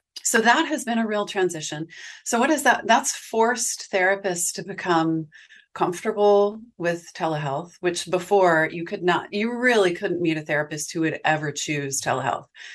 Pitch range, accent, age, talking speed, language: 165-220 Hz, American, 30-49, 165 wpm, English